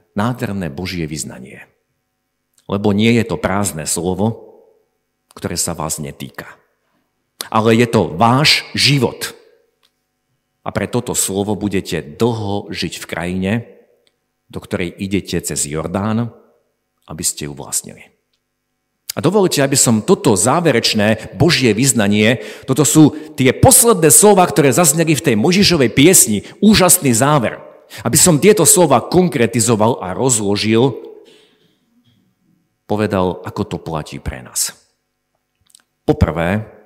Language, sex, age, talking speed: Slovak, male, 50-69, 115 wpm